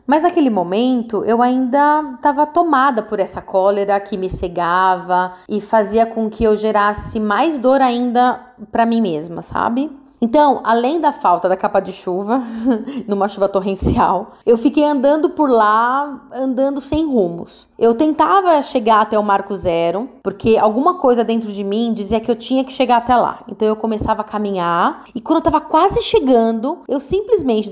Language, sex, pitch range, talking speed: Portuguese, female, 215-300 Hz, 170 wpm